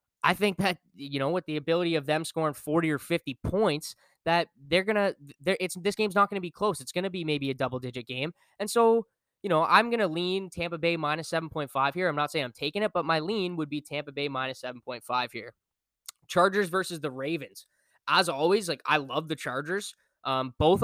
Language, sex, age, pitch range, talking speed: English, male, 10-29, 140-185 Hz, 220 wpm